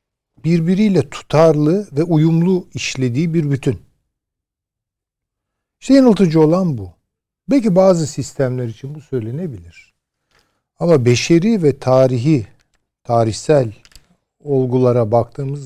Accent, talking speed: native, 90 wpm